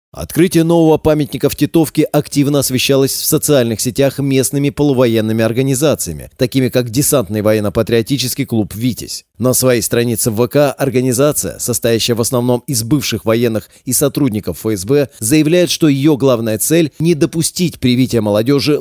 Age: 30-49